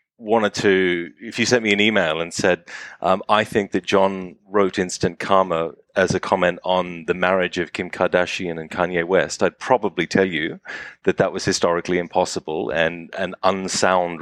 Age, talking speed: 30-49, 180 wpm